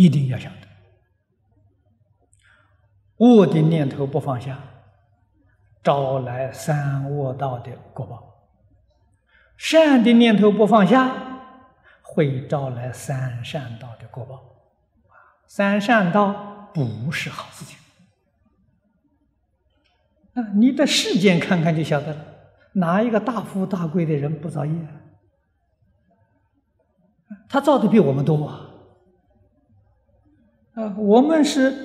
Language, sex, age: Chinese, male, 50-69